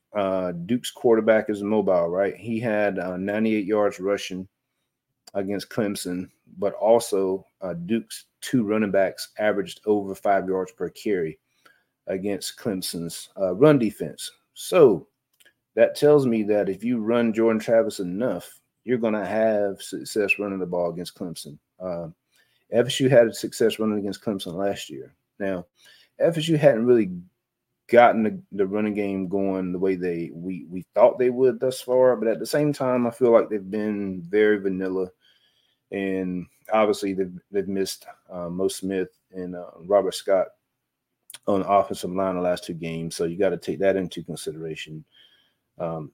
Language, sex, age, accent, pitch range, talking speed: English, male, 30-49, American, 95-120 Hz, 160 wpm